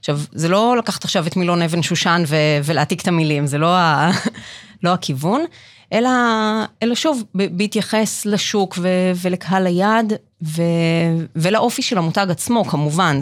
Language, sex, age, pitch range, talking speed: Hebrew, female, 30-49, 150-195 Hz, 150 wpm